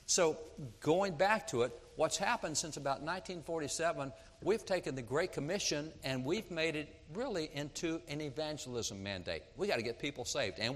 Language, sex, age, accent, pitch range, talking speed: English, male, 60-79, American, 125-175 Hz, 175 wpm